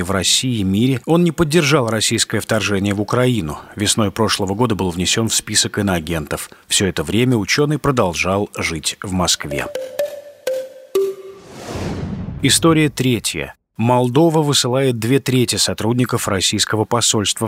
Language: Russian